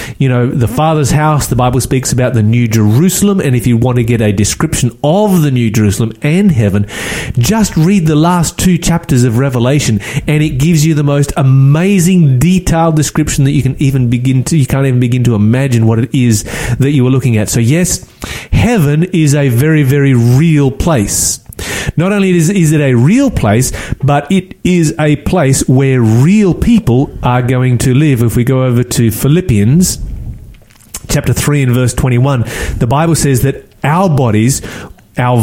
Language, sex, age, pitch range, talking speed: English, male, 30-49, 120-155 Hz, 190 wpm